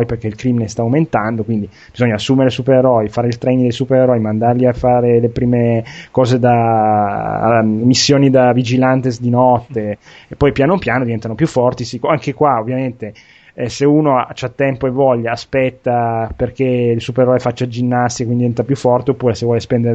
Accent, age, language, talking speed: native, 20-39, Italian, 170 wpm